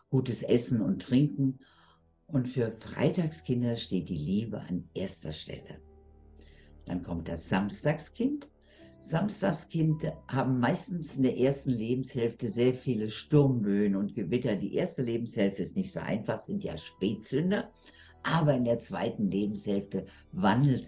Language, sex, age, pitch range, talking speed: German, female, 60-79, 95-145 Hz, 130 wpm